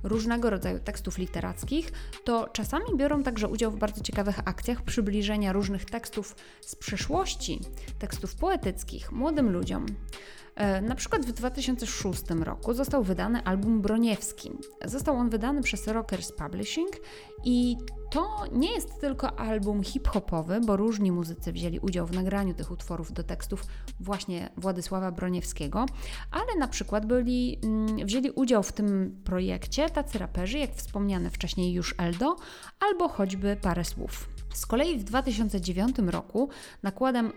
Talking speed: 135 wpm